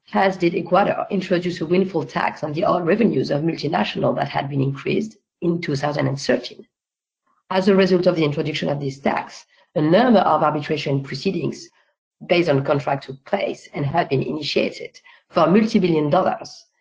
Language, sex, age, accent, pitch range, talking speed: English, female, 50-69, French, 150-200 Hz, 160 wpm